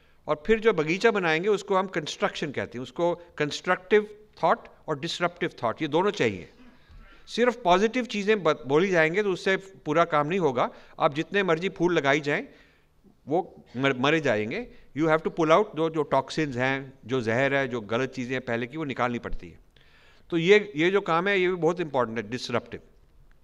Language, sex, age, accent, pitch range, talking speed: English, male, 50-69, Indian, 125-180 Hz, 160 wpm